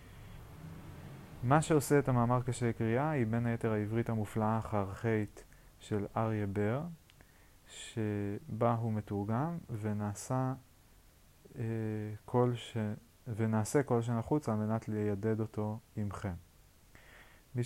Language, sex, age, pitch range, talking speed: Hebrew, male, 30-49, 100-115 Hz, 100 wpm